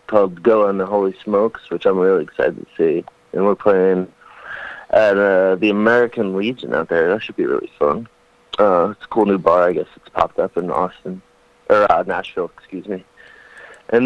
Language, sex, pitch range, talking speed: English, male, 95-125 Hz, 195 wpm